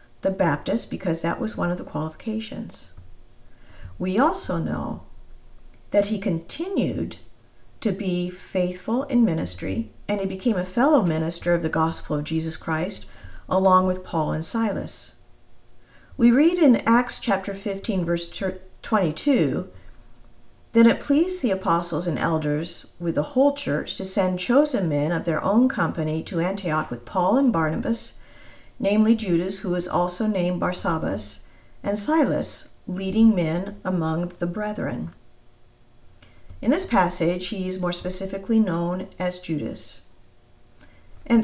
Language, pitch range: English, 165-220 Hz